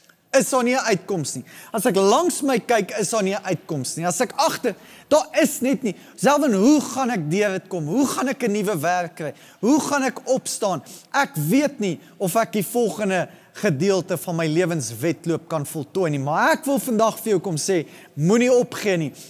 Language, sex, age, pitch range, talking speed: English, male, 30-49, 170-230 Hz, 200 wpm